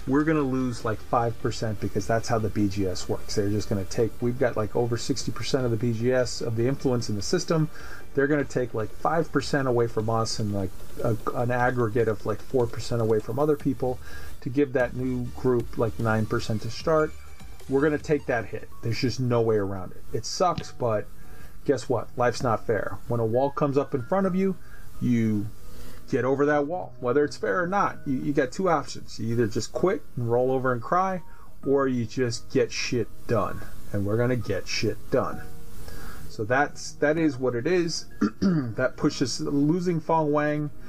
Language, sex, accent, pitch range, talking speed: English, male, American, 115-140 Hz, 205 wpm